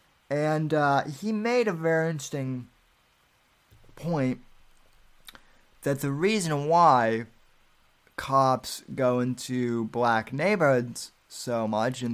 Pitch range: 120-140 Hz